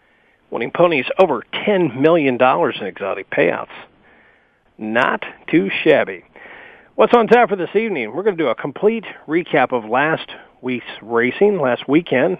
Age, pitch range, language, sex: 40-59, 145-210 Hz, English, male